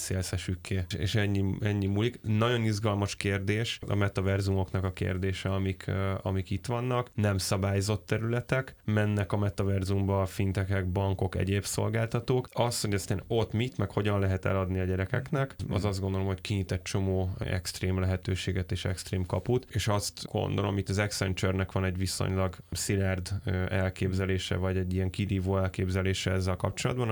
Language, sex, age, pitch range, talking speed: Hungarian, male, 10-29, 95-105 Hz, 155 wpm